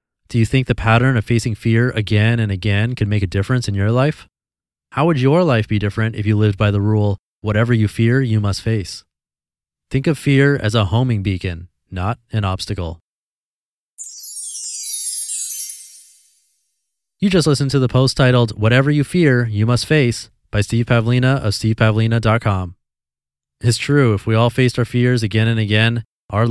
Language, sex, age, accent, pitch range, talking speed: English, male, 20-39, American, 105-125 Hz, 170 wpm